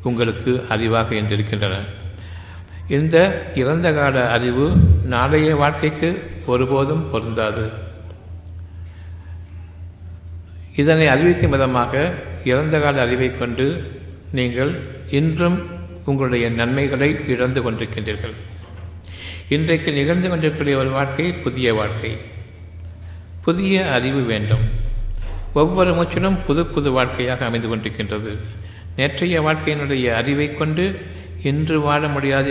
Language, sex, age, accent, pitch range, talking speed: Tamil, male, 60-79, native, 95-140 Hz, 85 wpm